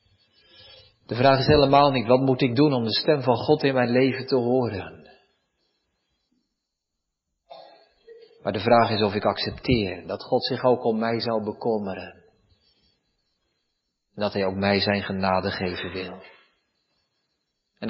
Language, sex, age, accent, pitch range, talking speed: Dutch, male, 40-59, Dutch, 110-160 Hz, 145 wpm